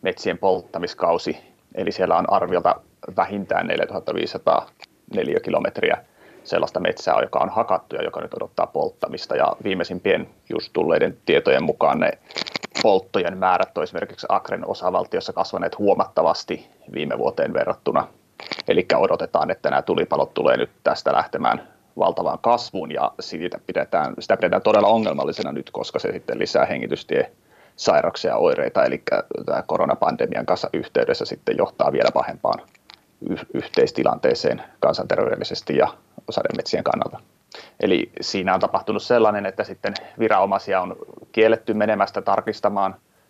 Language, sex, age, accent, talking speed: Finnish, male, 30-49, native, 125 wpm